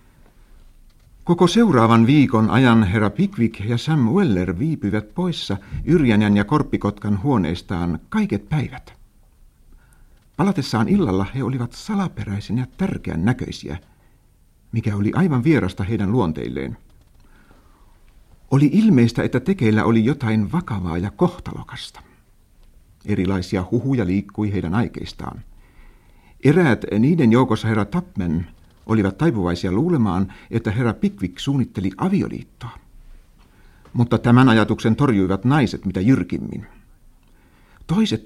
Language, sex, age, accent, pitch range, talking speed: Finnish, male, 60-79, native, 95-125 Hz, 105 wpm